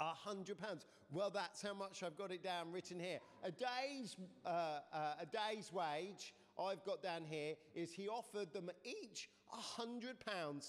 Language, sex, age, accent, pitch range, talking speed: English, male, 40-59, British, 165-215 Hz, 155 wpm